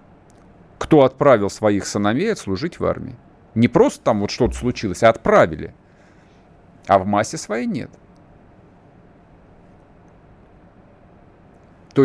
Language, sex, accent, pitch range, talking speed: Russian, male, native, 105-150 Hz, 105 wpm